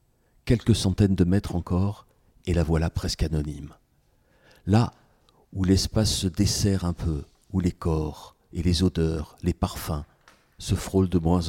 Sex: male